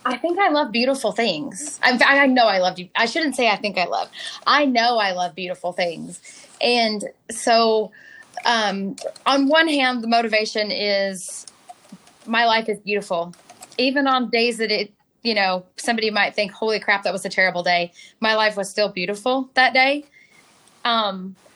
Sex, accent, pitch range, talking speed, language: female, American, 195-240 Hz, 175 wpm, English